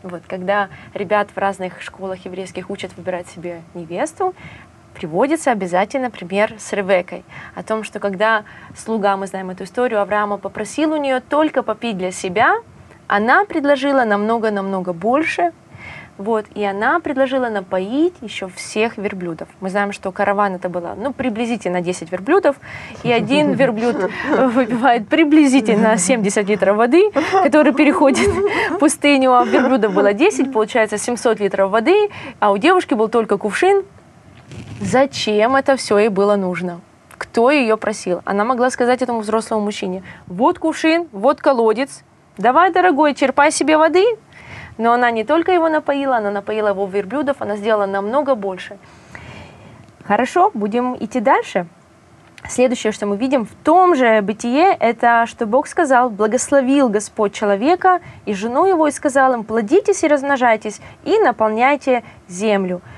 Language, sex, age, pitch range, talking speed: Russian, female, 20-39, 200-285 Hz, 140 wpm